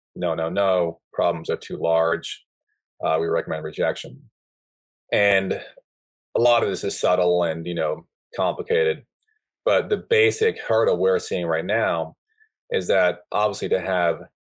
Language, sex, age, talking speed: English, male, 30-49, 145 wpm